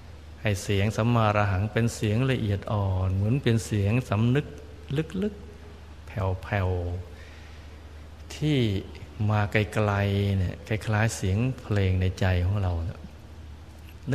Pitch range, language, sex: 90-110 Hz, Thai, male